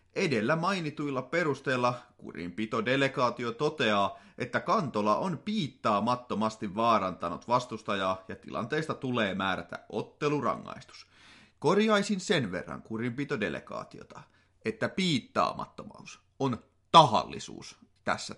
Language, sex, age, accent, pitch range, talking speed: Finnish, male, 30-49, native, 105-155 Hz, 80 wpm